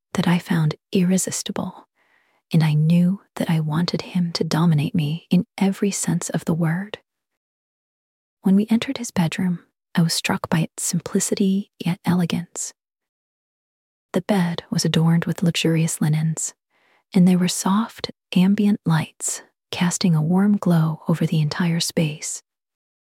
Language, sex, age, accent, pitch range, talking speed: English, female, 30-49, American, 160-190 Hz, 140 wpm